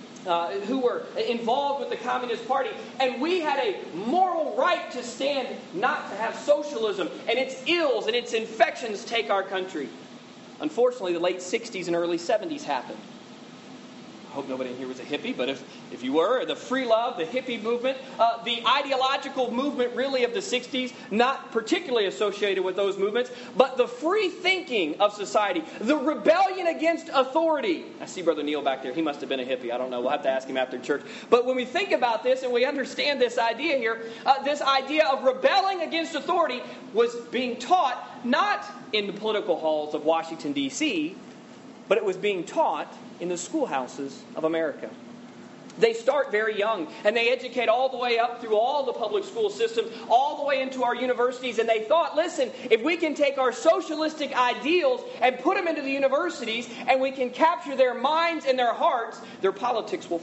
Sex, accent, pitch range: male, American, 220-315 Hz